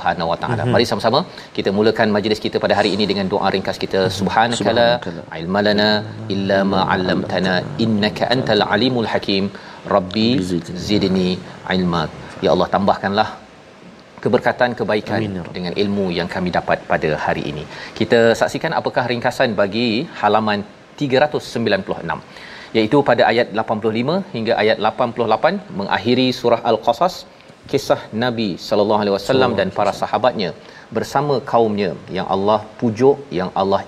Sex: male